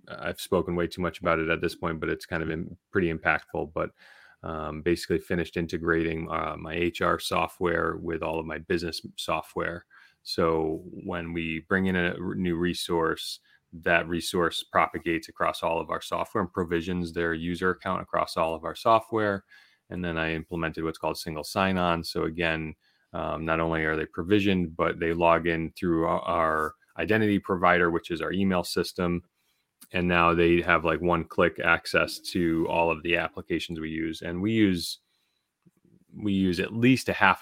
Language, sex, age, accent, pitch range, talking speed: English, male, 30-49, American, 80-90 Hz, 180 wpm